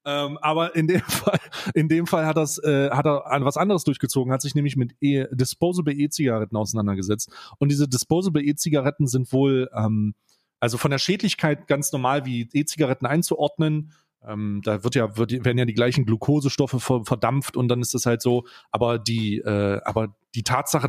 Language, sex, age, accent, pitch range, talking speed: German, male, 30-49, German, 125-170 Hz, 180 wpm